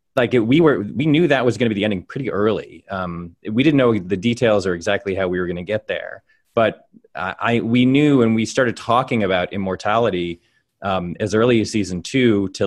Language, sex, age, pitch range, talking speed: English, male, 20-39, 90-115 Hz, 225 wpm